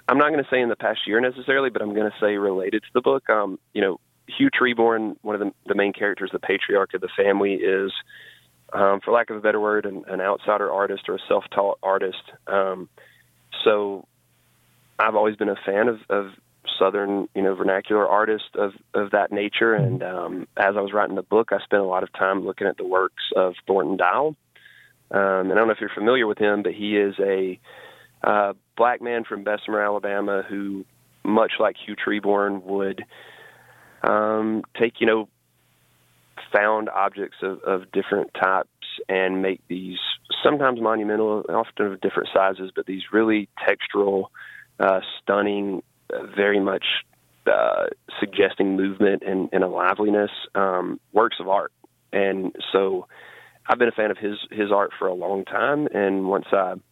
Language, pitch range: English, 95-105 Hz